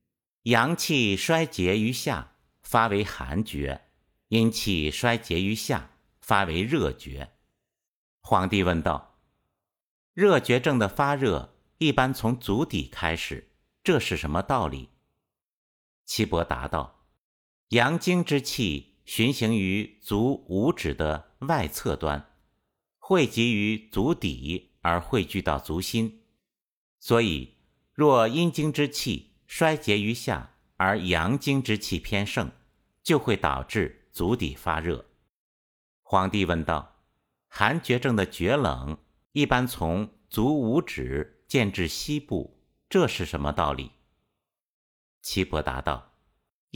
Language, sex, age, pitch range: Chinese, male, 50-69, 80-130 Hz